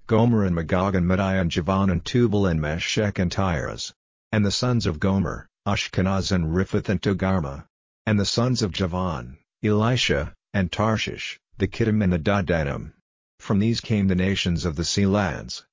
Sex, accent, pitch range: male, American, 90-105 Hz